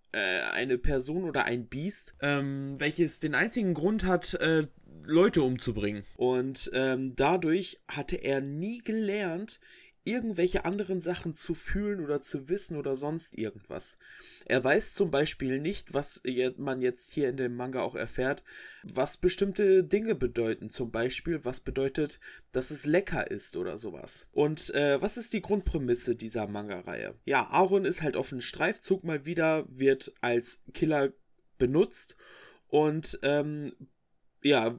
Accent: German